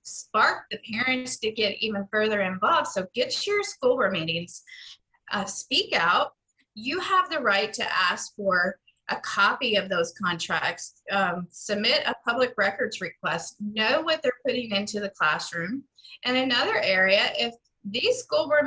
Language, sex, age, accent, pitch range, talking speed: English, female, 30-49, American, 200-265 Hz, 160 wpm